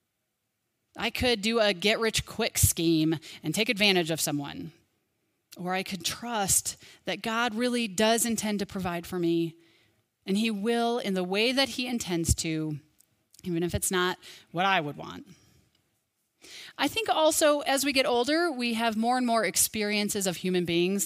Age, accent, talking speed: 30-49, American, 165 wpm